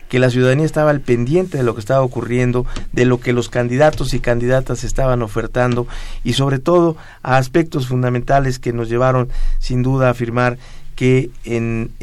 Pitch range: 120-145 Hz